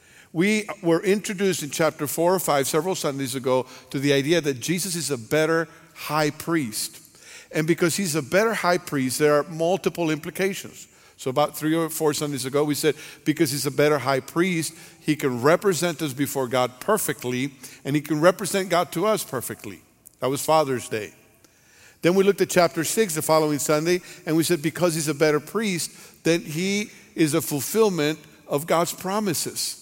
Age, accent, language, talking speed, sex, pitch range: 50-69, American, English, 185 wpm, male, 135-170 Hz